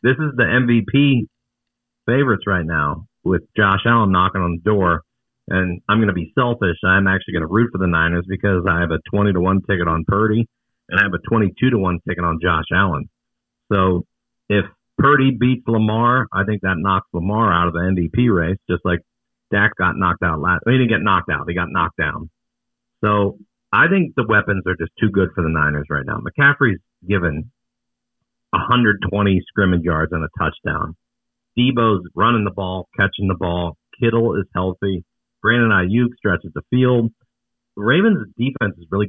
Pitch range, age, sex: 90-120 Hz, 50-69, male